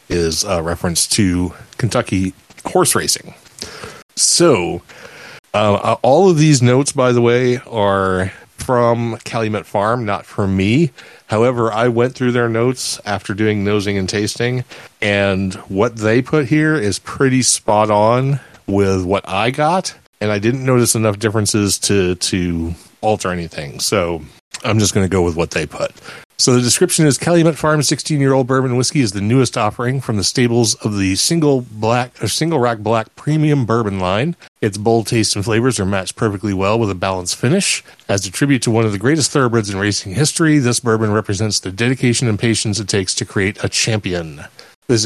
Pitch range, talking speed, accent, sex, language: 100-125 Hz, 175 wpm, American, male, English